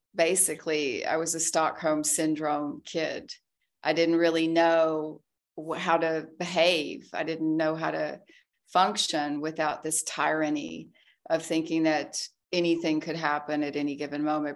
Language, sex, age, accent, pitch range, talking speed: English, female, 40-59, American, 150-170 Hz, 135 wpm